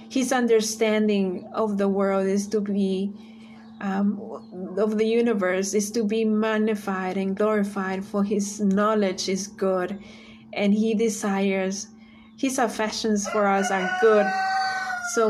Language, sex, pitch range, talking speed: English, female, 195-220 Hz, 130 wpm